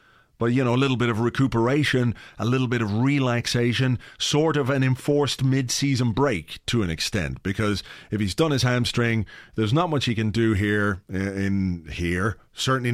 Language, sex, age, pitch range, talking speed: English, male, 30-49, 110-145 Hz, 175 wpm